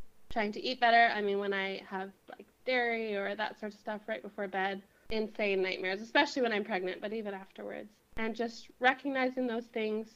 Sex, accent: female, American